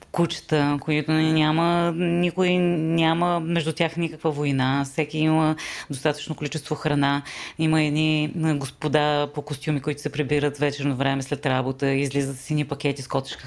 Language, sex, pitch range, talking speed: Bulgarian, female, 140-170 Hz, 145 wpm